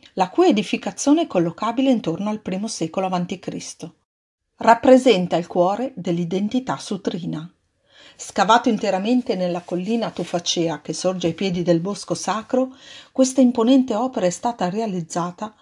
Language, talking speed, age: Italian, 125 wpm, 40-59